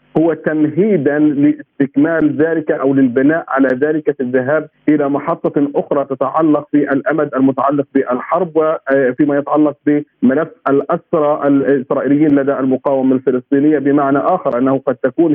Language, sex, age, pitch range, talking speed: Arabic, male, 50-69, 140-165 Hz, 120 wpm